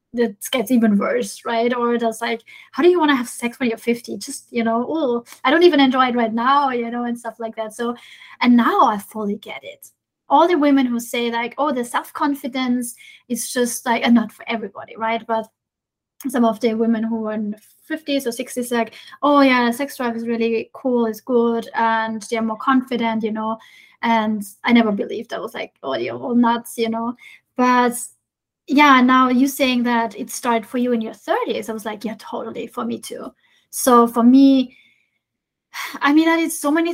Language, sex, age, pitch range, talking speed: English, female, 20-39, 225-255 Hz, 210 wpm